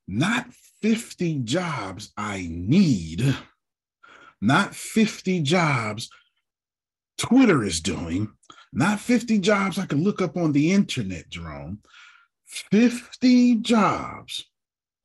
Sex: male